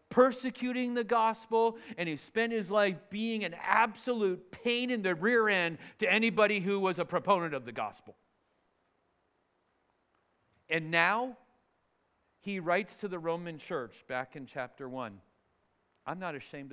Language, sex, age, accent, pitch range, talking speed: English, male, 50-69, American, 150-225 Hz, 145 wpm